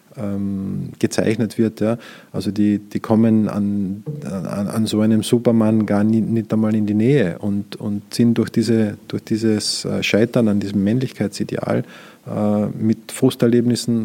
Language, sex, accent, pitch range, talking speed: German, male, Austrian, 105-120 Hz, 130 wpm